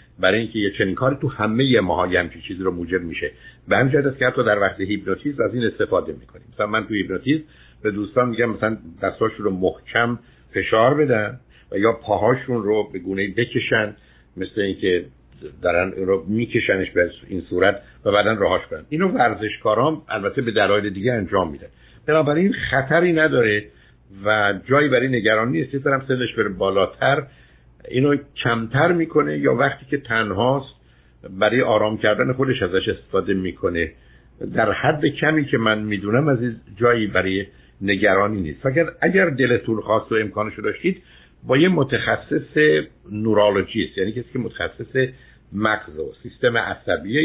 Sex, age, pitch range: male, 60-79, 100-135 Hz